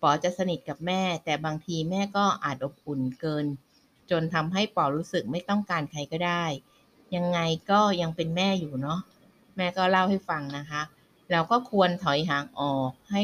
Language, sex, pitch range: Thai, female, 150-190 Hz